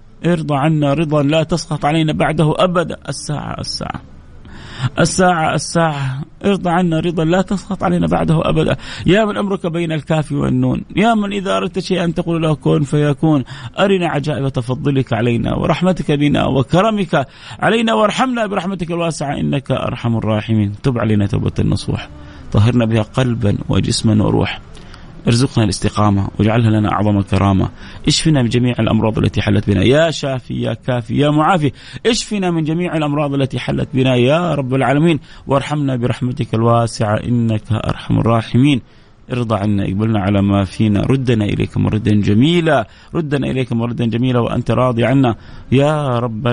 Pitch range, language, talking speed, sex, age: 105-155 Hz, English, 145 wpm, male, 30-49